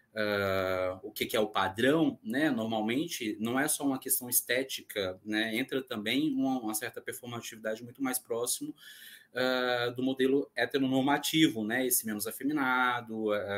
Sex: male